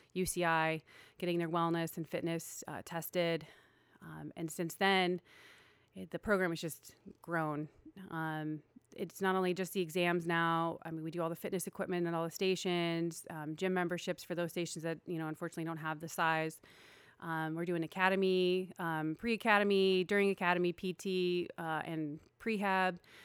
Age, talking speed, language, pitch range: 30-49, 165 wpm, English, 165-185 Hz